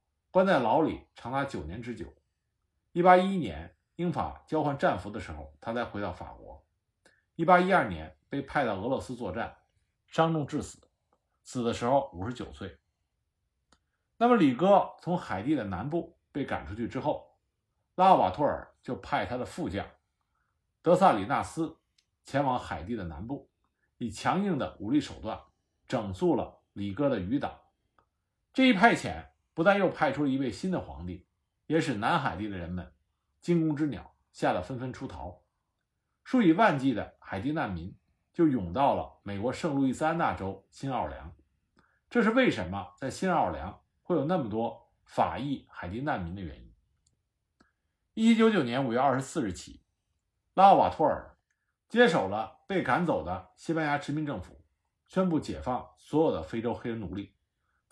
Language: Chinese